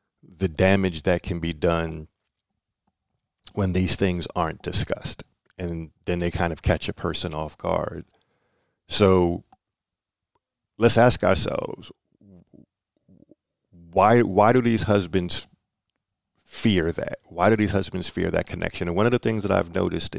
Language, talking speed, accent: English, 140 wpm, American